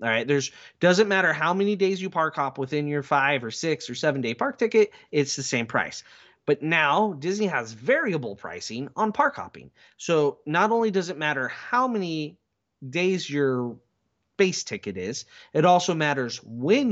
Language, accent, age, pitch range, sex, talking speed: English, American, 30-49, 130-185 Hz, male, 180 wpm